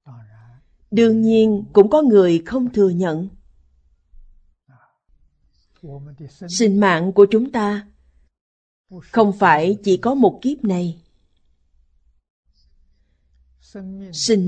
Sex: female